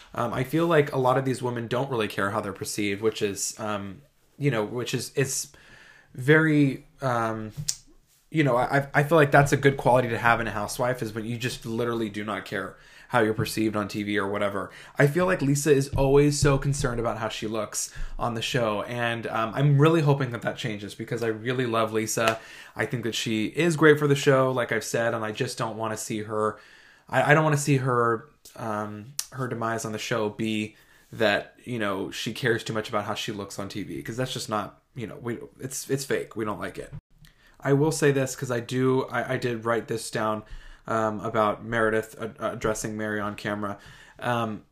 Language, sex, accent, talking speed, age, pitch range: English, male, American, 225 wpm, 20-39, 110-135 Hz